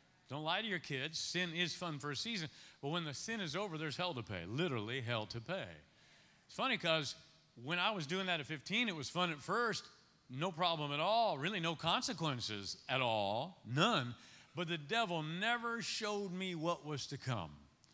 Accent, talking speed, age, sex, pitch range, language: American, 200 wpm, 40-59, male, 130-180 Hz, English